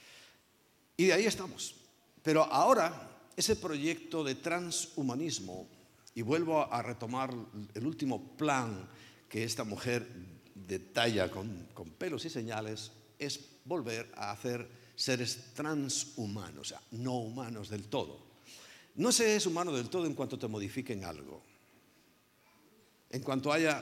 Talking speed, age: 130 wpm, 50-69